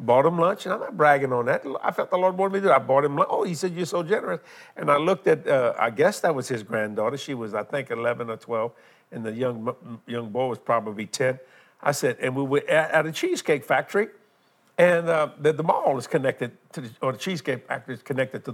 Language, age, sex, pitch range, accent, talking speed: English, 50-69, male, 140-200 Hz, American, 250 wpm